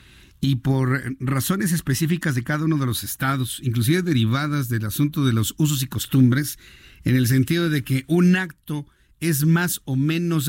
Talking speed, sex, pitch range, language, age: 170 wpm, male, 130-170 Hz, Spanish, 50-69